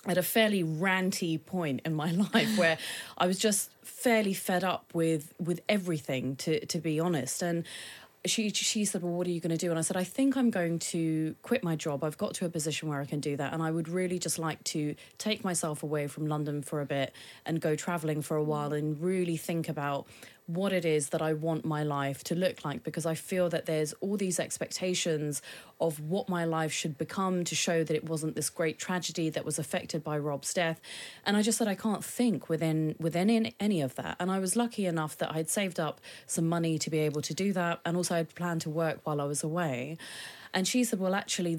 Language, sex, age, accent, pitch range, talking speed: English, female, 20-39, British, 155-185 Hz, 235 wpm